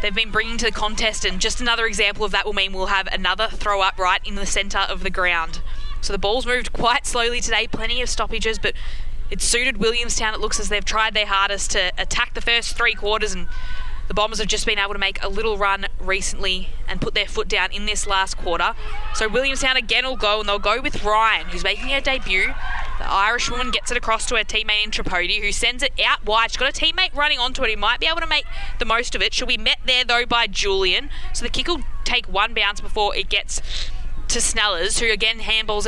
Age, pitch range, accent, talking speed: 20-39, 205-250 Hz, Australian, 240 wpm